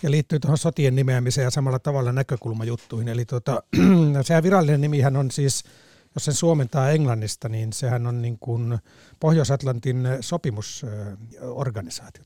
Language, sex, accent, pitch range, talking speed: Finnish, male, native, 120-150 Hz, 135 wpm